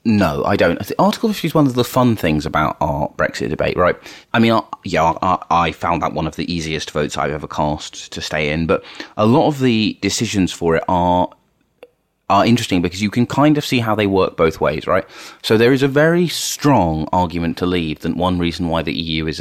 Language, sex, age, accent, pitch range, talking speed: English, male, 30-49, British, 80-105 Hz, 225 wpm